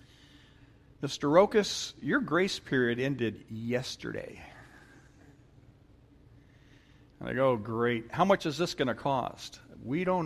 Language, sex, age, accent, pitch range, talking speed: English, male, 50-69, American, 115-140 Hz, 125 wpm